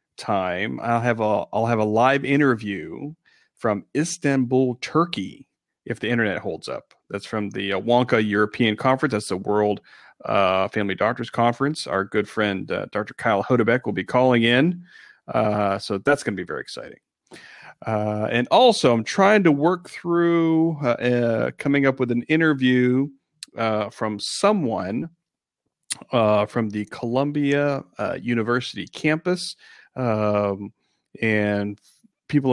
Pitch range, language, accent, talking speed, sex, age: 105-135 Hz, English, American, 140 wpm, male, 40-59